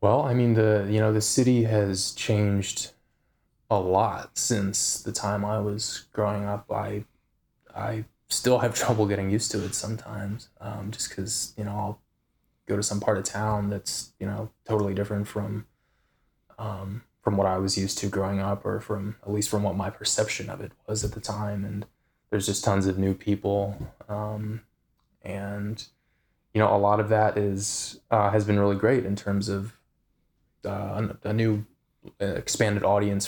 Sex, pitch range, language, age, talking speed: male, 100-110 Hz, English, 20-39, 180 wpm